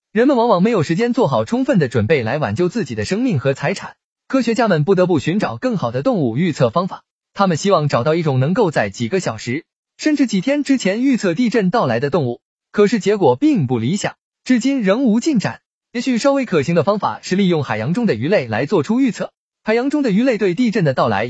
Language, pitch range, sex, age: Chinese, 145-235 Hz, male, 20-39